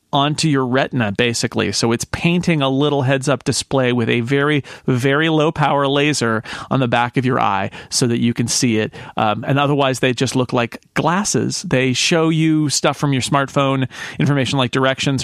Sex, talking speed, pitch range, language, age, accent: male, 195 wpm, 125-160 Hz, English, 40-59, American